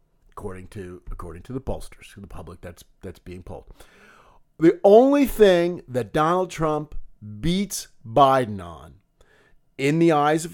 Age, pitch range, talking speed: 50-69, 125-180 Hz, 150 wpm